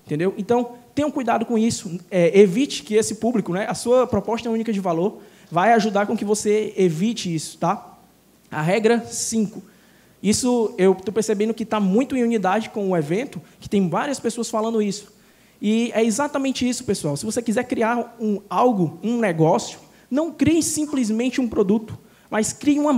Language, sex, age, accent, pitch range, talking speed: Portuguese, male, 20-39, Brazilian, 195-245 Hz, 180 wpm